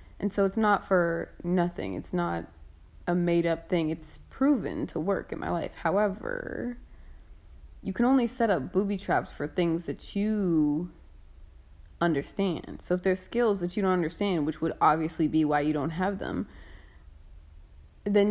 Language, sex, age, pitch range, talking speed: English, female, 20-39, 150-235 Hz, 160 wpm